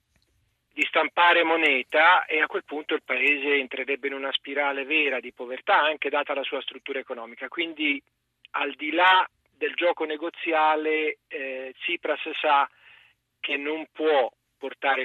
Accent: native